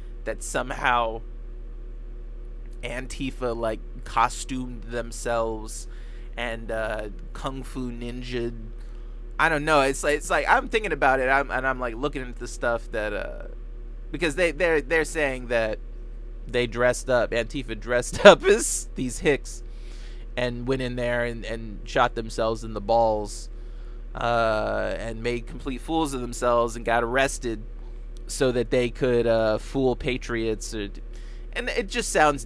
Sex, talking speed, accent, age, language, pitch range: male, 150 wpm, American, 20-39, English, 120-130 Hz